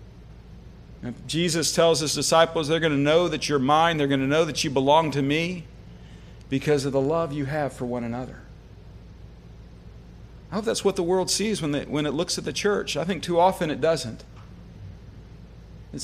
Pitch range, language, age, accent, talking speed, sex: 135-170 Hz, English, 50-69, American, 195 wpm, male